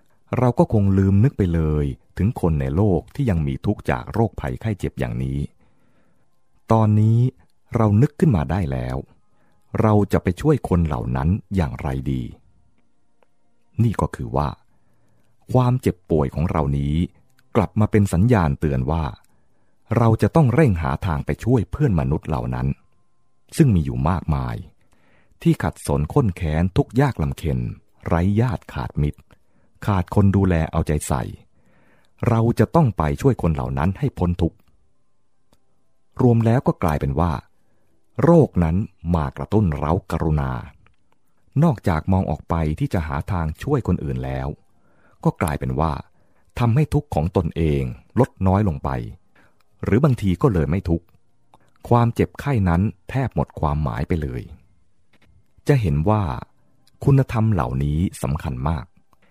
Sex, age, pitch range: male, 30-49, 75-110 Hz